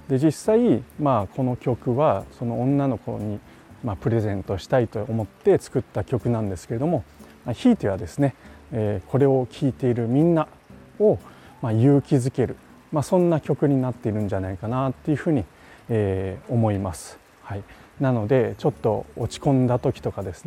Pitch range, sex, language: 100-130 Hz, male, Japanese